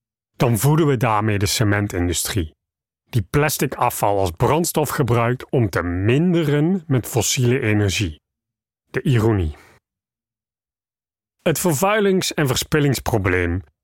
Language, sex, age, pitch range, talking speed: Dutch, male, 40-59, 105-150 Hz, 105 wpm